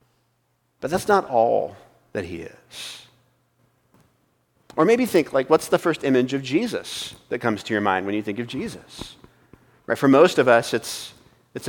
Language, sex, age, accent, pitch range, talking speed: English, male, 30-49, American, 110-145 Hz, 175 wpm